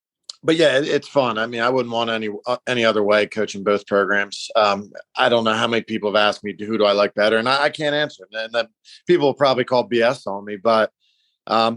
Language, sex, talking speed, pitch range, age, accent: English, male, 240 wpm, 110-130 Hz, 40-59, American